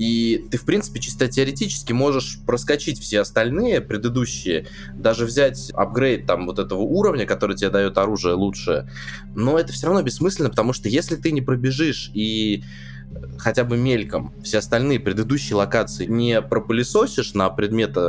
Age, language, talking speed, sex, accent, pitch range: 20-39, Russian, 150 wpm, male, native, 95-125 Hz